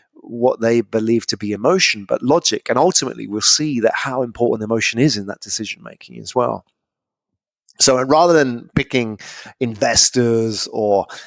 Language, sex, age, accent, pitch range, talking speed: English, male, 30-49, British, 115-150 Hz, 160 wpm